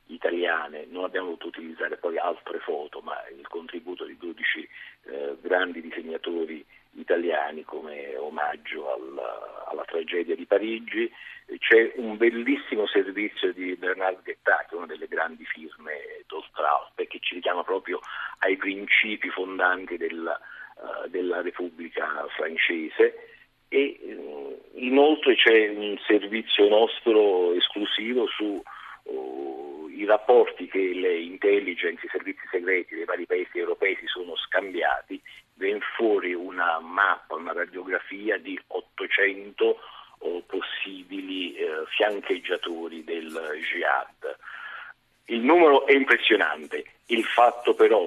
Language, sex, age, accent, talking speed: Italian, male, 50-69, native, 120 wpm